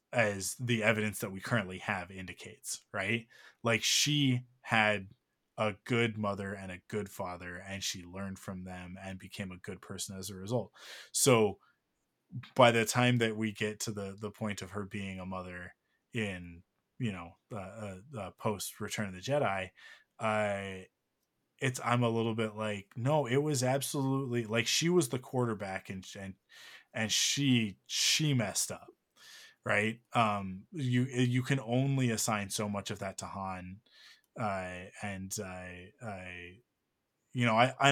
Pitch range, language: 95-120 Hz, English